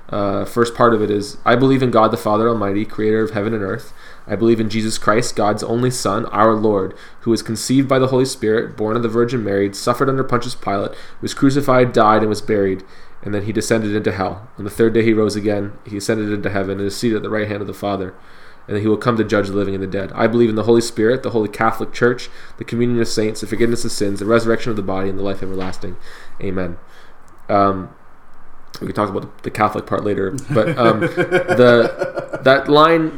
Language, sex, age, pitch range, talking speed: English, male, 20-39, 105-130 Hz, 235 wpm